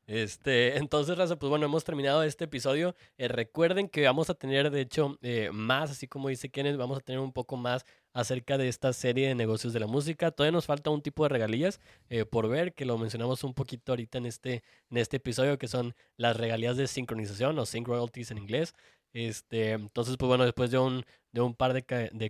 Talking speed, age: 225 wpm, 20-39